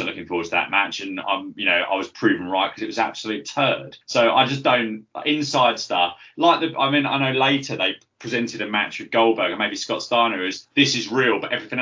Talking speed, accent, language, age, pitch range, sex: 245 wpm, British, English, 20-39, 110-150 Hz, male